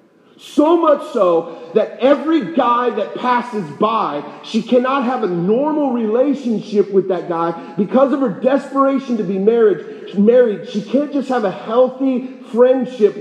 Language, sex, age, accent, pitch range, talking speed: English, male, 40-59, American, 200-260 Hz, 150 wpm